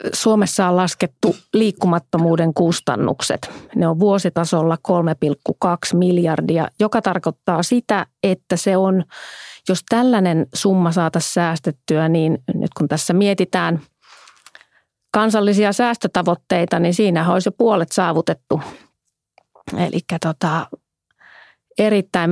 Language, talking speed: Finnish, 100 wpm